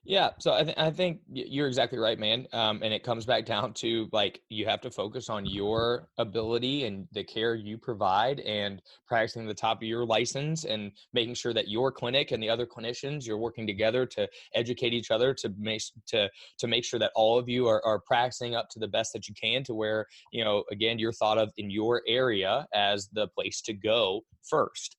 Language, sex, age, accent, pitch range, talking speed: English, male, 20-39, American, 110-125 Hz, 220 wpm